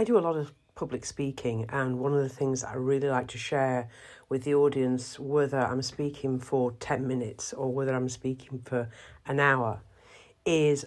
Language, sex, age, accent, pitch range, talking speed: English, female, 50-69, British, 125-140 Hz, 195 wpm